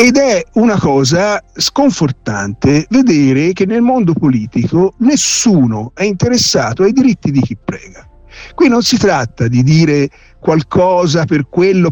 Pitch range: 135-215 Hz